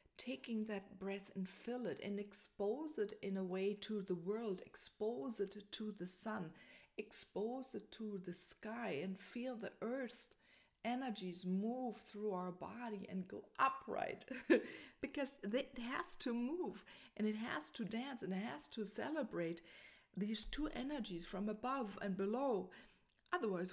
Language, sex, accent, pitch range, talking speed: English, female, German, 190-240 Hz, 150 wpm